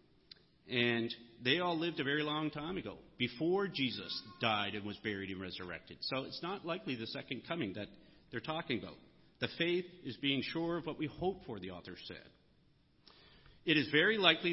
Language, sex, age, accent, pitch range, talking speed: English, male, 50-69, American, 115-155 Hz, 185 wpm